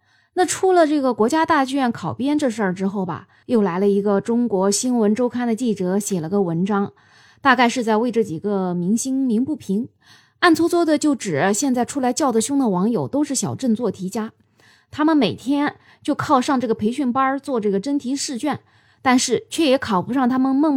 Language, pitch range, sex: Chinese, 200-285 Hz, female